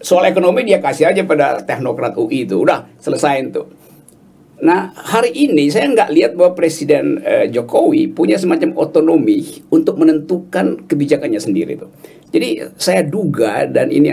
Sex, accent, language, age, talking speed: male, native, Indonesian, 50-69, 150 wpm